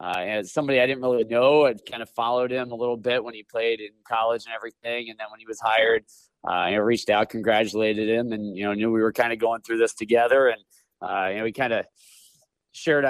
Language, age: English, 30-49